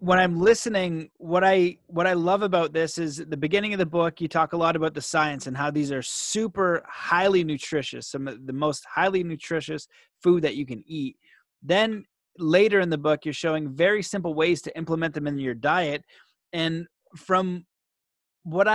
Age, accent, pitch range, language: 30-49, American, 150-185 Hz, English